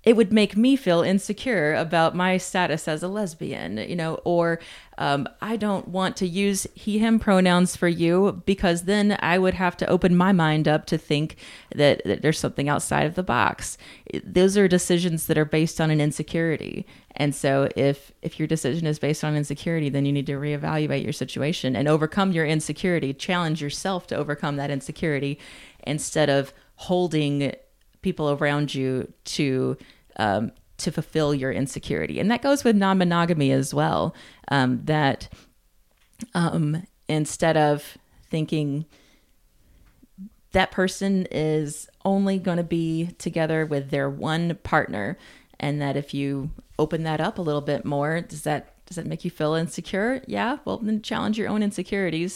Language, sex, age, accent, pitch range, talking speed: English, female, 30-49, American, 145-185 Hz, 165 wpm